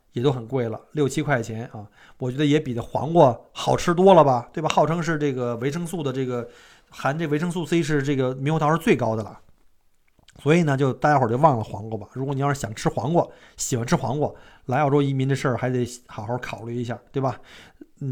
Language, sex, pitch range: Chinese, male, 125-170 Hz